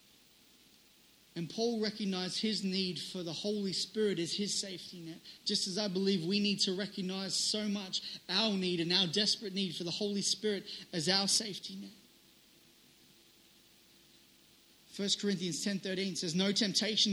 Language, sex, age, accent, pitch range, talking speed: English, male, 30-49, Australian, 185-220 Hz, 150 wpm